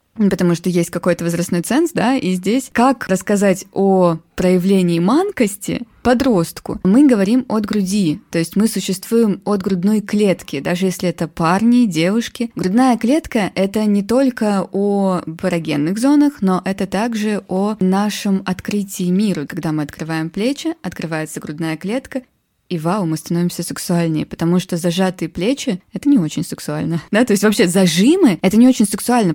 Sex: female